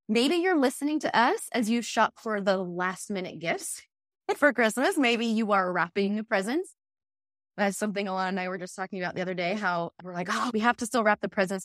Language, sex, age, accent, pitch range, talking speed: English, female, 20-39, American, 175-225 Hz, 220 wpm